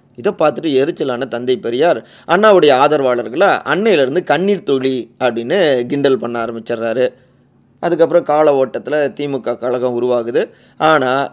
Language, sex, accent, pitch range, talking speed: Tamil, male, native, 120-145 Hz, 115 wpm